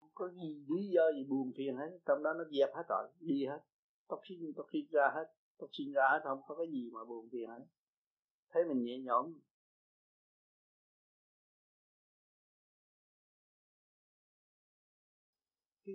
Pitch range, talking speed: 135-195 Hz, 145 wpm